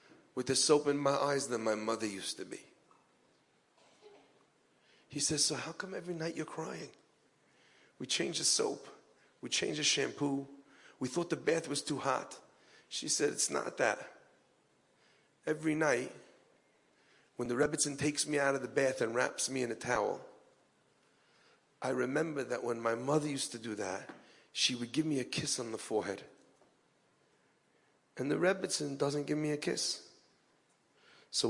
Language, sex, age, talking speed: English, male, 40-59, 165 wpm